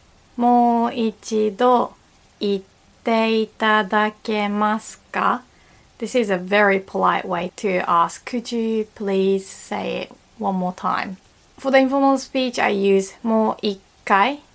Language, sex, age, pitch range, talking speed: English, female, 20-39, 200-250 Hz, 100 wpm